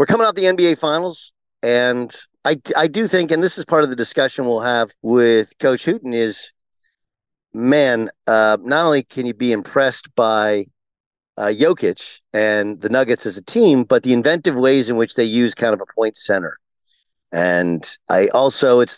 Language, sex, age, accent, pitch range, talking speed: English, male, 50-69, American, 110-140 Hz, 185 wpm